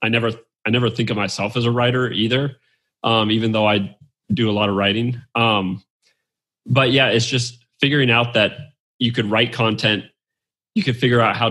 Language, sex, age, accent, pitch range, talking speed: English, male, 20-39, American, 110-125 Hz, 195 wpm